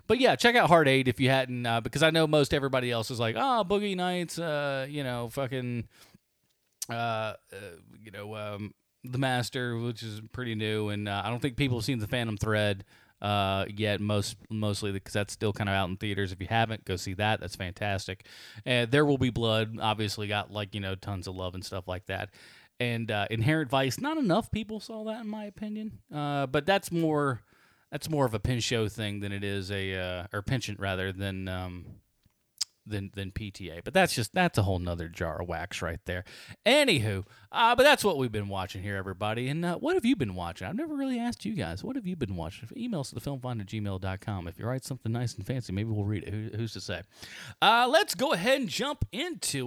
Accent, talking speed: American, 225 wpm